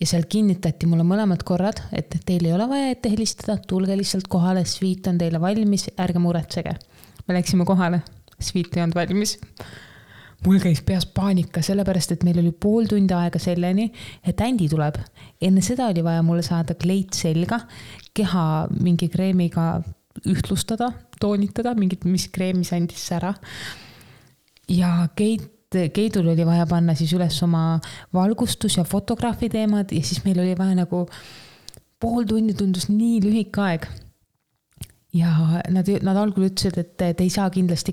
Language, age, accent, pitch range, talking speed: English, 20-39, Finnish, 170-200 Hz, 150 wpm